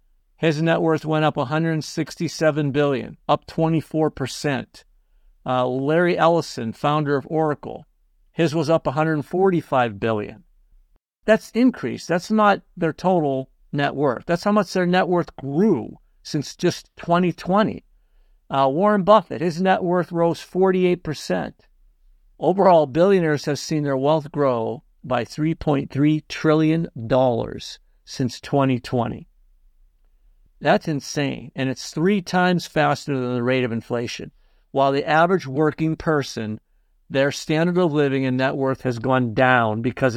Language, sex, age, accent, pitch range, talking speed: English, male, 50-69, American, 125-165 Hz, 130 wpm